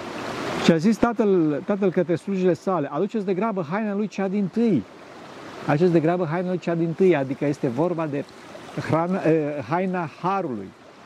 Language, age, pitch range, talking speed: Romanian, 50-69, 150-190 Hz, 170 wpm